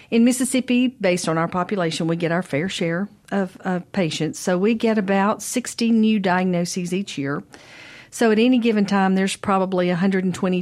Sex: female